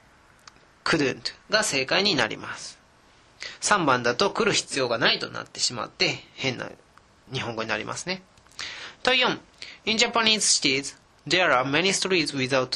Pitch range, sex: 135-200 Hz, male